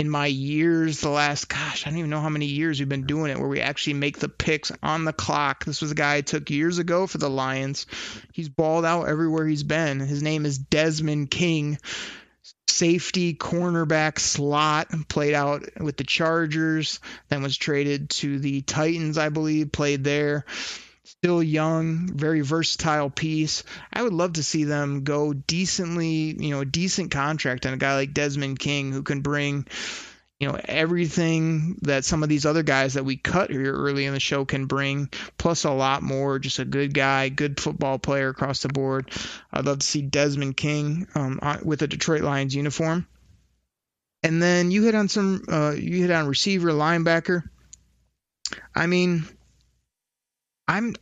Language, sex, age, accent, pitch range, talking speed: English, male, 30-49, American, 140-165 Hz, 180 wpm